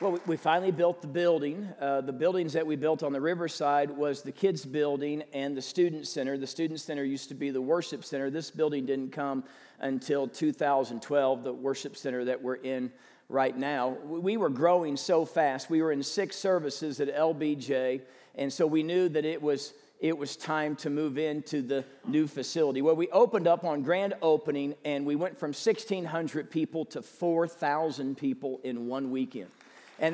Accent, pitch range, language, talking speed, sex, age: American, 145-195 Hz, English, 185 wpm, male, 40-59